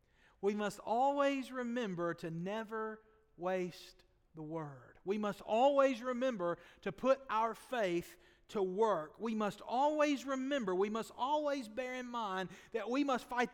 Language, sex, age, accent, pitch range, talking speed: English, male, 40-59, American, 155-205 Hz, 145 wpm